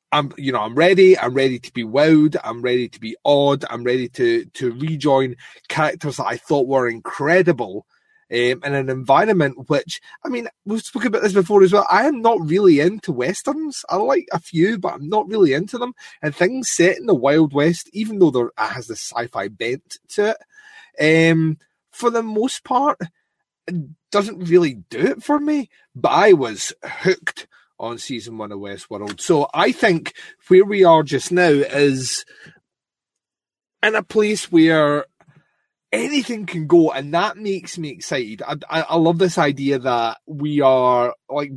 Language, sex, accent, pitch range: English, male, British, 135-195 Hz